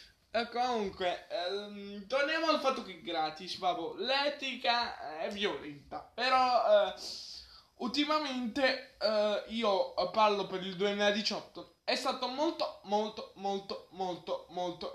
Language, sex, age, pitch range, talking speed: Italian, male, 20-39, 190-255 Hz, 110 wpm